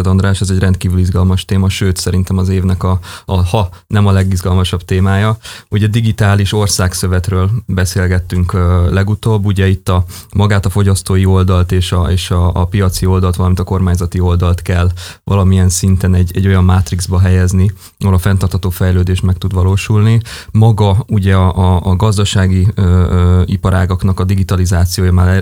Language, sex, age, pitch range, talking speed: Hungarian, male, 20-39, 90-100 Hz, 155 wpm